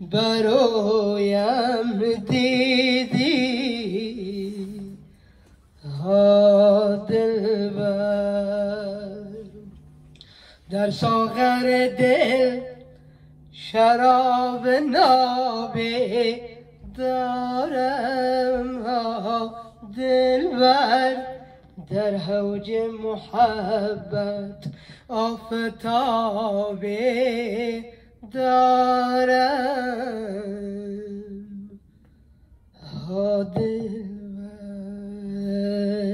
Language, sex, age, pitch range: Persian, female, 20-39, 205-250 Hz